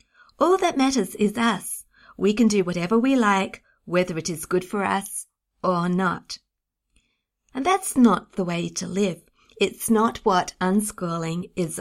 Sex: female